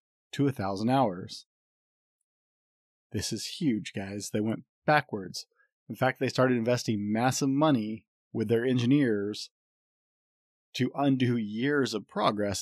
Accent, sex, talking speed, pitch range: American, male, 120 wpm, 105-130 Hz